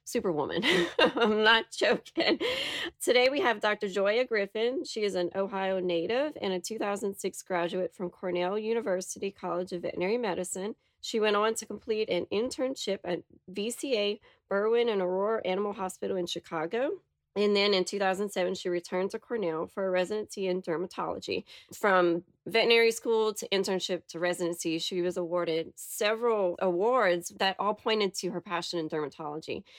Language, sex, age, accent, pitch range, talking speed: English, female, 30-49, American, 175-215 Hz, 150 wpm